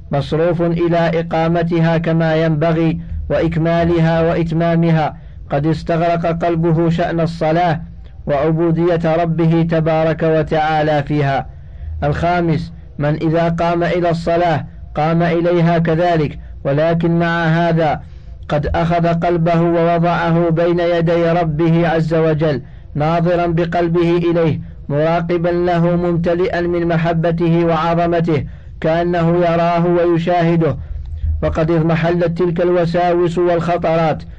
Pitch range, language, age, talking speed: 160-170 Hz, Arabic, 50-69, 95 wpm